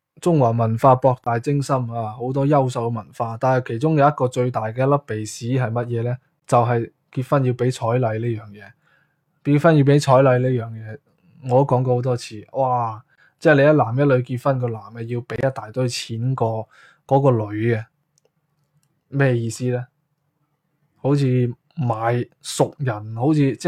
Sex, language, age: male, Chinese, 20-39